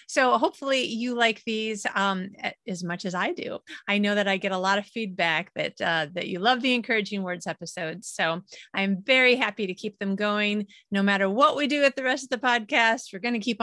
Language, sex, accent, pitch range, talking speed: English, female, American, 190-235 Hz, 225 wpm